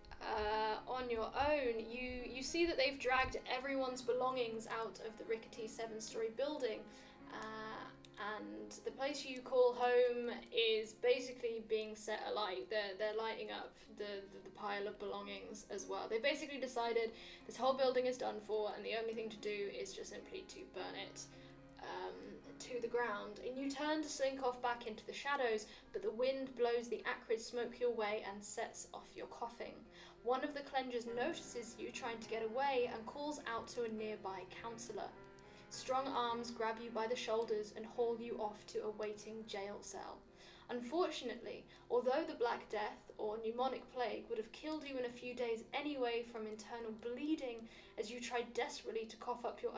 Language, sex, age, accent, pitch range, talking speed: English, female, 10-29, British, 225-265 Hz, 185 wpm